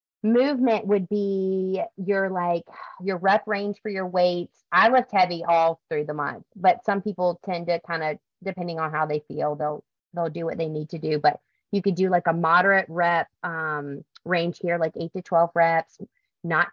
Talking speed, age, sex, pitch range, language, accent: 195 wpm, 30-49, female, 170-200 Hz, English, American